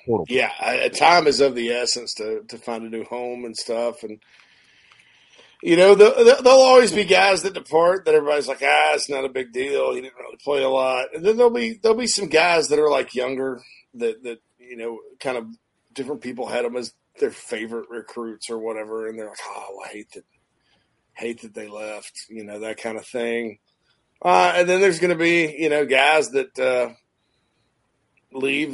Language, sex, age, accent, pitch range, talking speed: English, male, 40-59, American, 115-180 Hz, 205 wpm